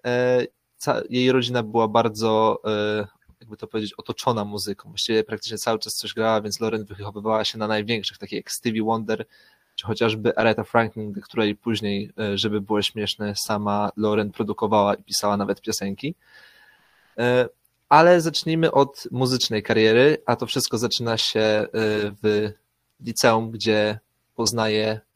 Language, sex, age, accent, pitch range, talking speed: Polish, male, 20-39, native, 105-120 Hz, 130 wpm